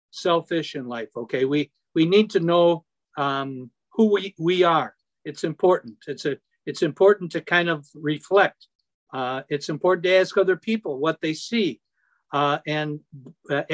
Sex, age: male, 60-79